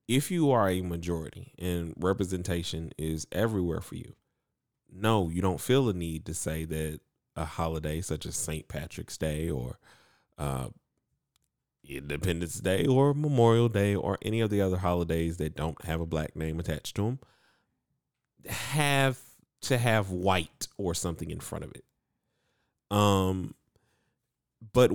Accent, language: American, English